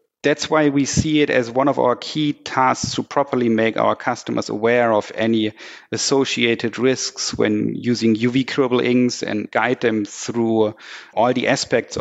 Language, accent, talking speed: English, German, 160 wpm